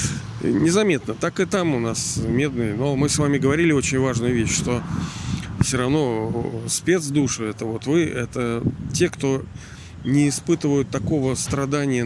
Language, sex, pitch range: Russian, male, 115-145 Hz